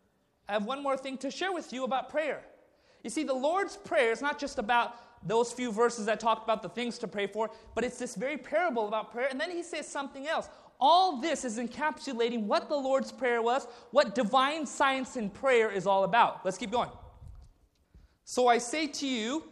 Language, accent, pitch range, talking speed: English, American, 235-280 Hz, 210 wpm